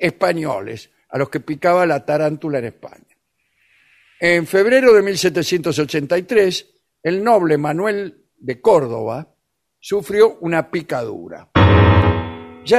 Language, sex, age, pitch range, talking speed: Spanish, male, 60-79, 145-200 Hz, 105 wpm